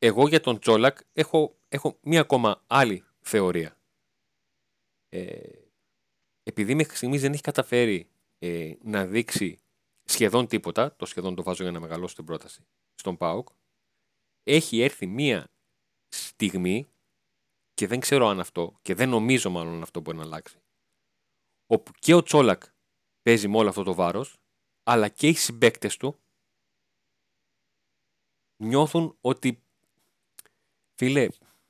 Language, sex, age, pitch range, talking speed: Greek, male, 40-59, 95-130 Hz, 125 wpm